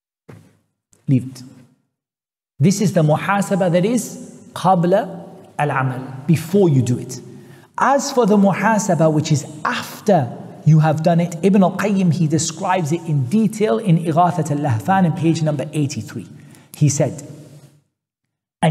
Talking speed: 120 wpm